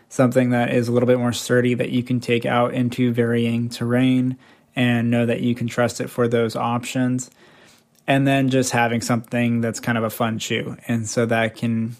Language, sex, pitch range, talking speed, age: English, male, 120-130 Hz, 205 wpm, 20-39